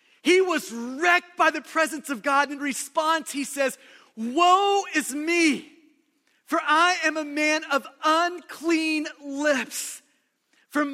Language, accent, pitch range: English, American, 275-330 Hz